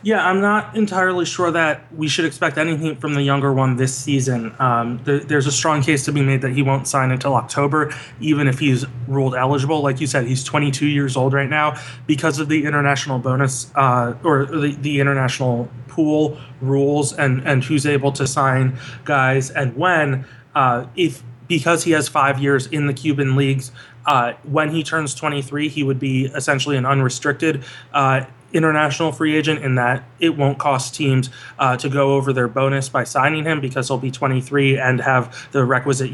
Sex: male